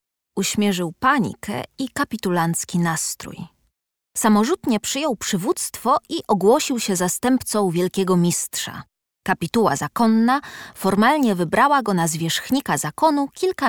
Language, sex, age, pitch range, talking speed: Polish, female, 20-39, 170-225 Hz, 100 wpm